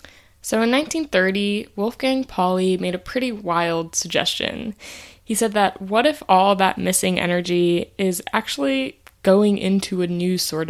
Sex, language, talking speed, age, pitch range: female, English, 145 wpm, 20-39, 180-230 Hz